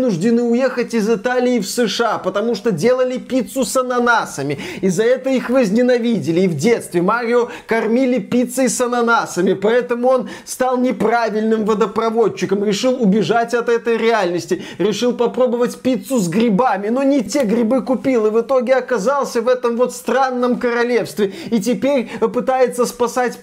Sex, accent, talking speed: male, native, 145 wpm